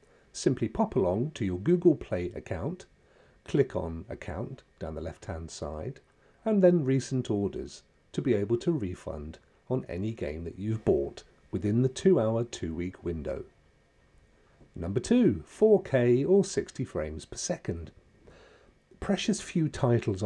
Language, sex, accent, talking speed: English, male, British, 140 wpm